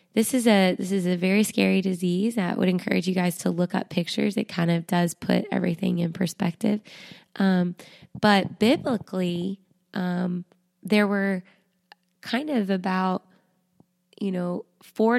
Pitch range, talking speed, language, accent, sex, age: 175-190 Hz, 150 wpm, English, American, female, 20-39